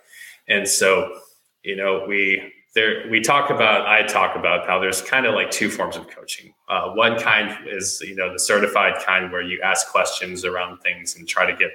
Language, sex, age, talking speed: English, male, 20-39, 205 wpm